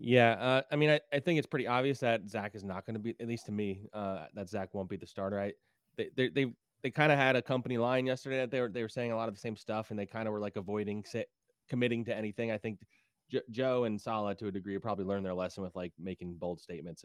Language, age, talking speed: English, 20-39, 285 wpm